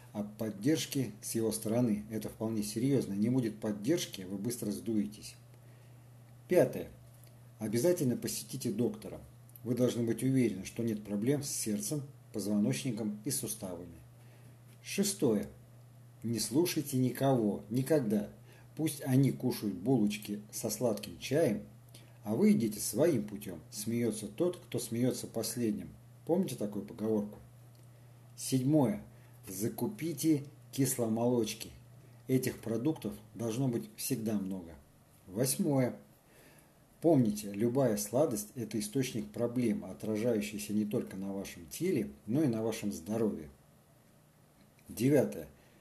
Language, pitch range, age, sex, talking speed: Russian, 105-125 Hz, 50-69, male, 110 wpm